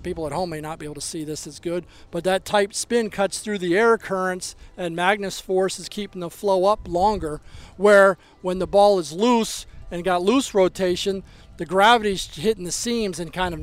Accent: American